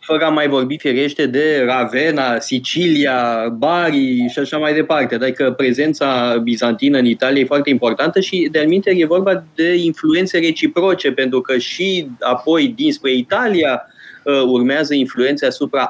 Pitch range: 120-145 Hz